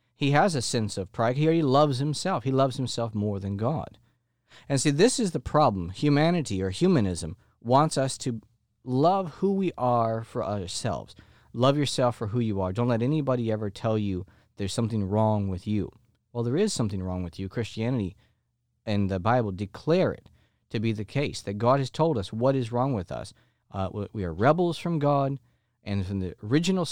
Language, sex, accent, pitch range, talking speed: English, male, American, 105-135 Hz, 195 wpm